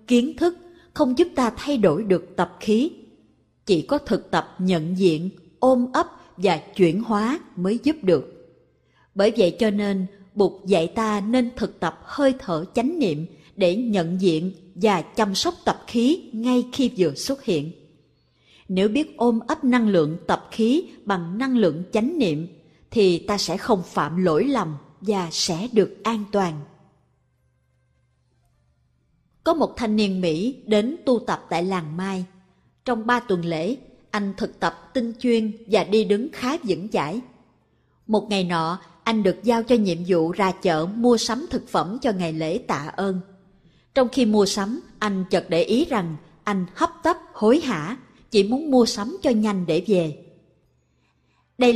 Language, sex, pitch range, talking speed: Vietnamese, female, 175-245 Hz, 170 wpm